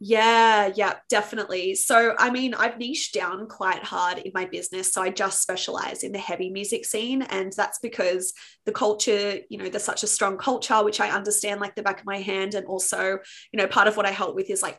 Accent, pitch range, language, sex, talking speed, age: Australian, 190-220 Hz, English, female, 225 wpm, 20-39